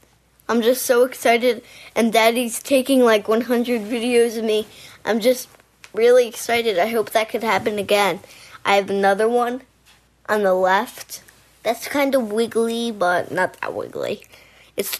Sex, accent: female, American